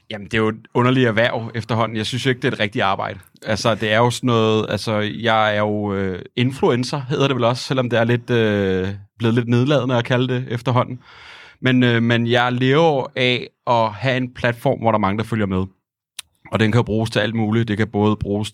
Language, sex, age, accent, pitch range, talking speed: Danish, male, 30-49, native, 105-125 Hz, 235 wpm